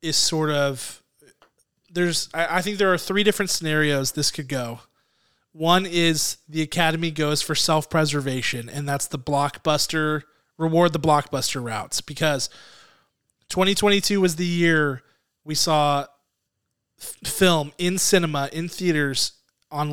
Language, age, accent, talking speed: English, 20-39, American, 130 wpm